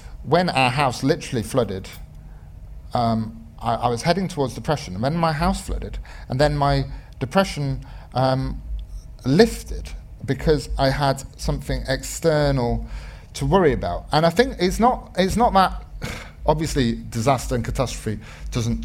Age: 40-59